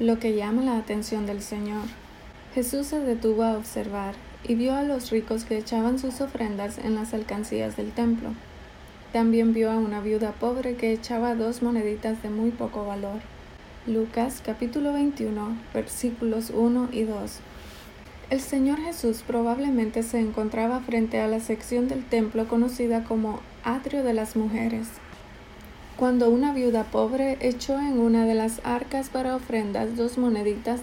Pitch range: 220-245 Hz